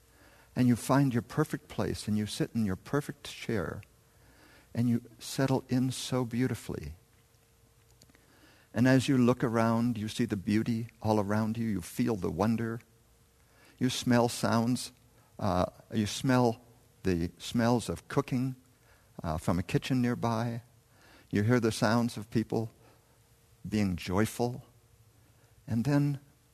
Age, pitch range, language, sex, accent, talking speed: 60-79, 105-120 Hz, English, male, American, 135 wpm